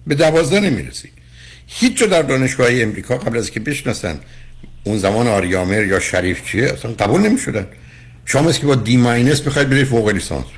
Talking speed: 155 wpm